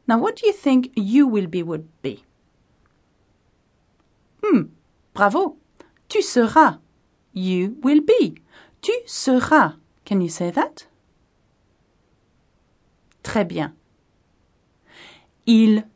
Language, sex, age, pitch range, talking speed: English, female, 40-59, 180-285 Hz, 100 wpm